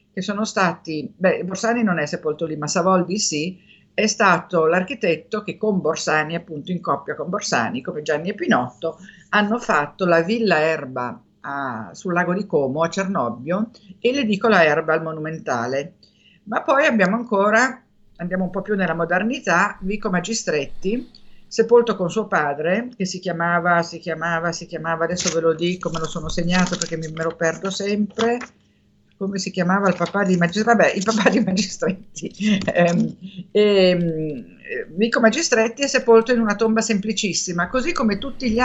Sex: female